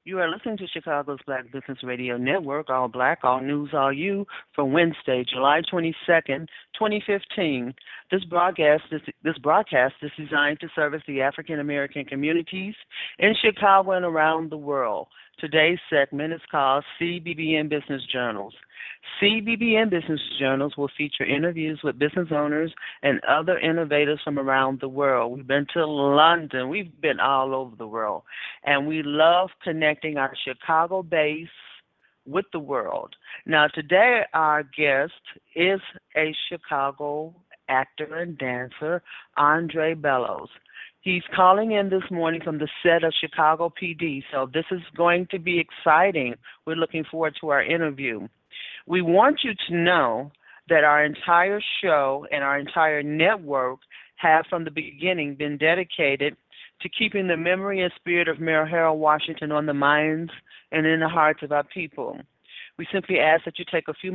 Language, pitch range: English, 145-170 Hz